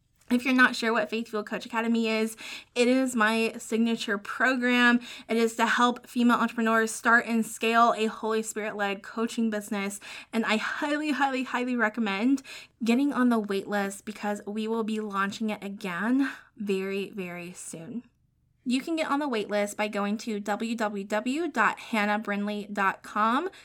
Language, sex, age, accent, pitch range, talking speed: English, female, 20-39, American, 215-255 Hz, 150 wpm